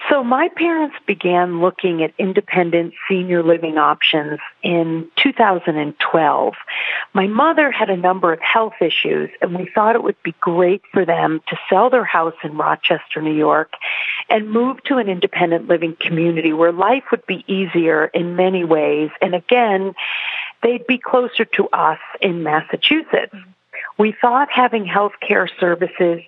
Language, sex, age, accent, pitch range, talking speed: English, female, 50-69, American, 165-220 Hz, 150 wpm